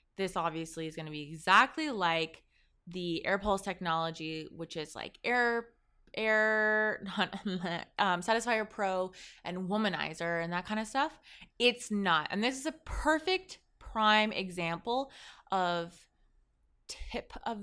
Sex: female